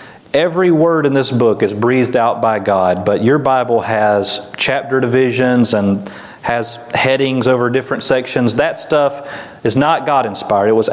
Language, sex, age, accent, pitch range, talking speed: English, male, 40-59, American, 115-145 Hz, 160 wpm